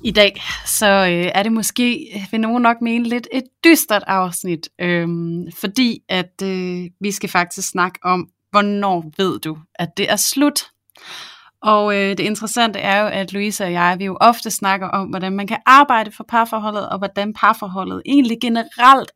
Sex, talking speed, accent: female, 180 wpm, native